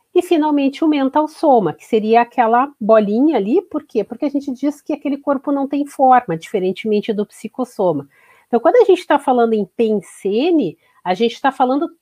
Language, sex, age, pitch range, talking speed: Portuguese, female, 40-59, 220-300 Hz, 185 wpm